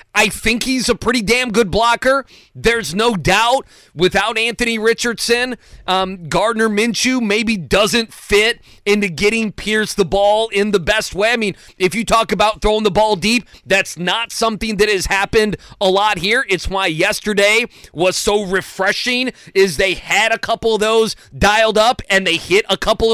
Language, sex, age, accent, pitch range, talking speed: English, male, 30-49, American, 195-230 Hz, 175 wpm